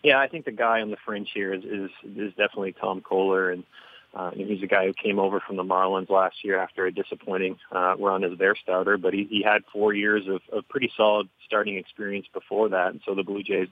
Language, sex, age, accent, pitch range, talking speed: English, male, 30-49, American, 95-105 Hz, 240 wpm